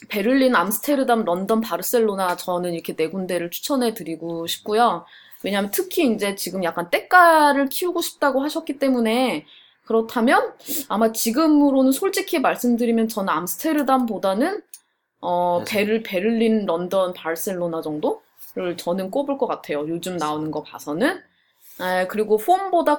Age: 20-39